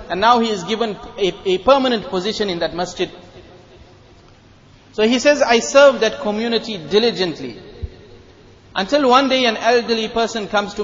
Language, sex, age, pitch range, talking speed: English, male, 30-49, 185-230 Hz, 155 wpm